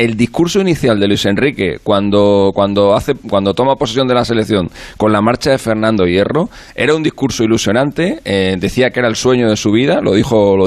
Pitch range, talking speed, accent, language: 95-115 Hz, 210 wpm, Spanish, Spanish